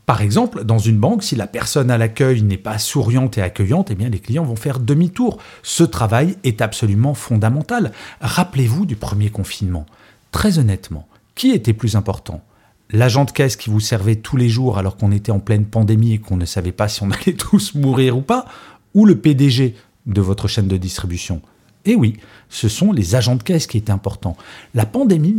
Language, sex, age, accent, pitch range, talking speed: French, male, 40-59, French, 105-140 Hz, 195 wpm